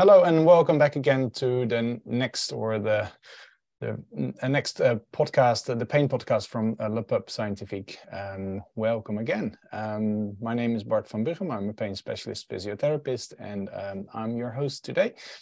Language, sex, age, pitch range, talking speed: English, male, 20-39, 110-140 Hz, 170 wpm